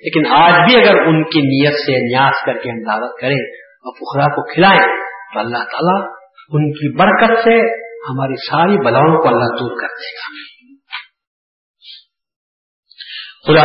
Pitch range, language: 120-185 Hz, Urdu